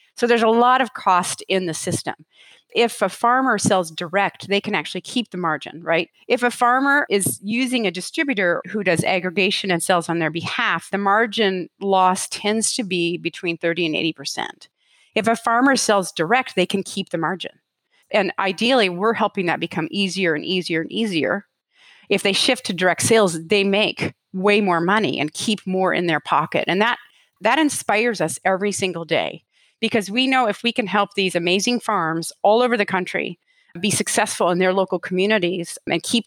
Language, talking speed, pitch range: English, 190 wpm, 180-225 Hz